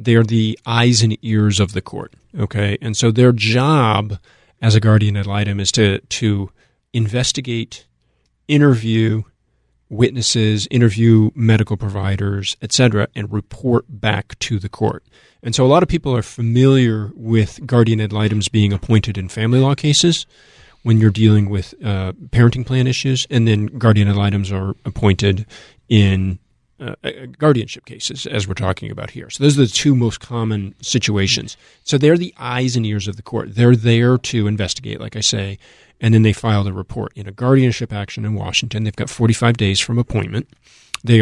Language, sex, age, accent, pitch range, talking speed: English, male, 40-59, American, 105-120 Hz, 175 wpm